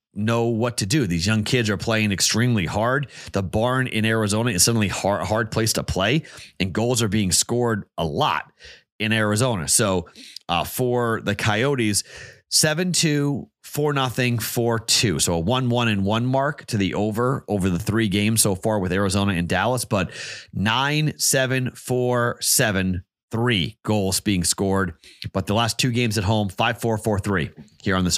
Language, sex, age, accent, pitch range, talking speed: English, male, 30-49, American, 100-125 Hz, 180 wpm